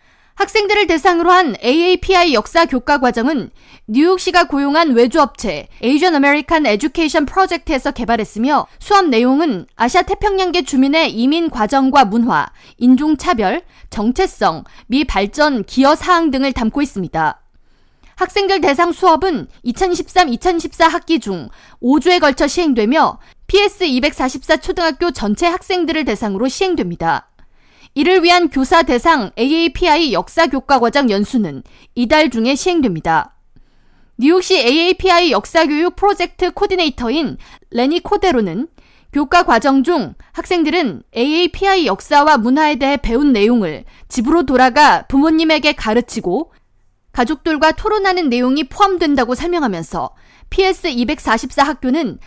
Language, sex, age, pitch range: Korean, female, 20-39, 255-350 Hz